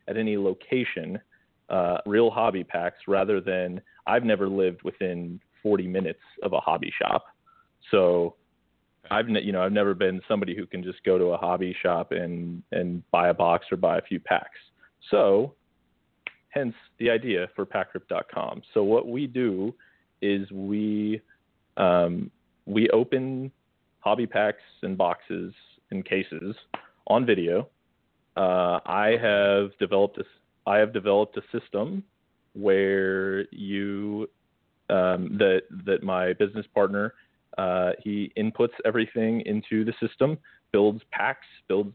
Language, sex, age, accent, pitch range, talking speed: English, male, 30-49, American, 95-110 Hz, 135 wpm